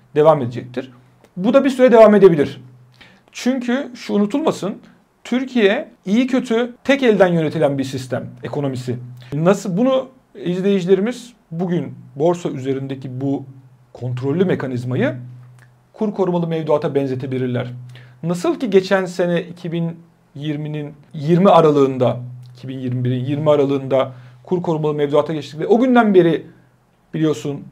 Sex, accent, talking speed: male, native, 110 wpm